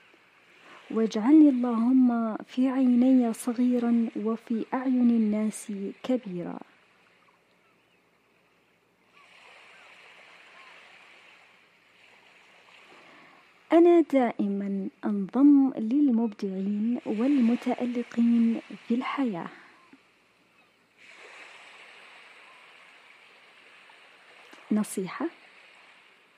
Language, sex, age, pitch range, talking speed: Arabic, female, 20-39, 215-270 Hz, 40 wpm